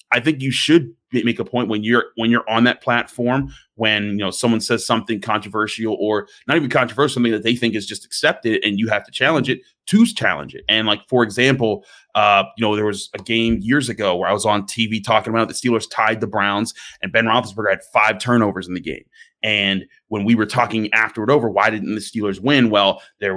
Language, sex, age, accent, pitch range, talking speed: English, male, 30-49, American, 105-130 Hz, 230 wpm